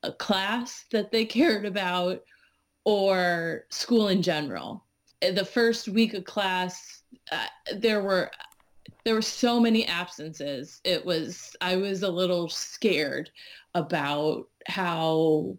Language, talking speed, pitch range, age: English, 125 wpm, 180-230 Hz, 30-49